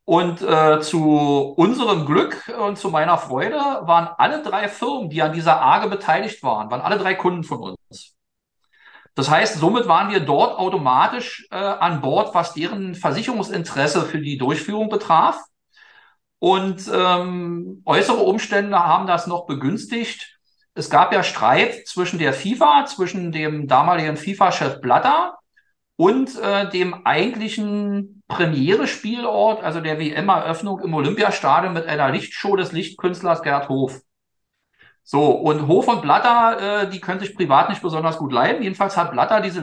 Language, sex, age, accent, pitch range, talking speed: German, male, 40-59, German, 160-205 Hz, 145 wpm